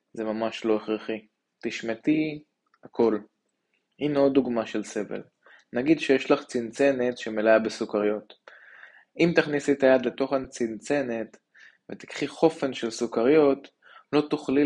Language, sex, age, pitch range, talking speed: Hebrew, male, 20-39, 110-135 Hz, 120 wpm